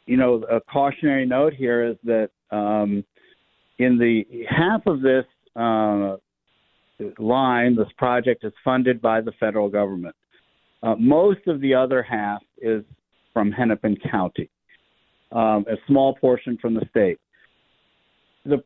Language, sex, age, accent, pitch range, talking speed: English, male, 50-69, American, 110-135 Hz, 135 wpm